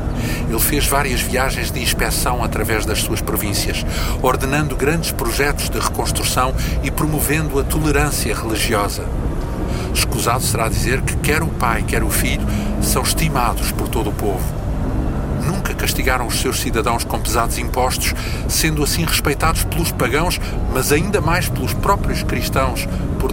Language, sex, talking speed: Portuguese, male, 145 wpm